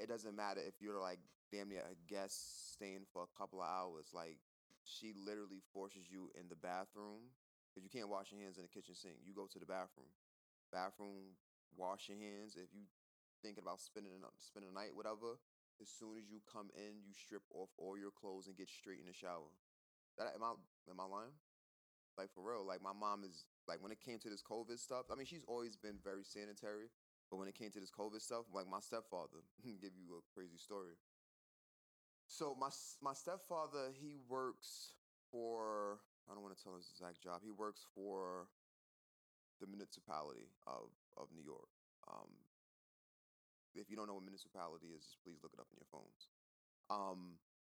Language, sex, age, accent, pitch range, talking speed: English, male, 20-39, American, 90-110 Hz, 195 wpm